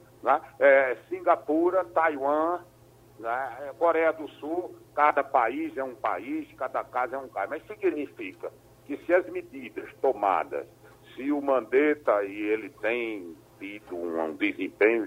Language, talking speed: Portuguese, 135 wpm